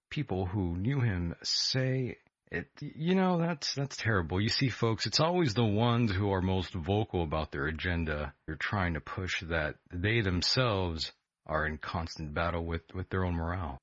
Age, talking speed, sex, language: 40-59, 180 wpm, male, English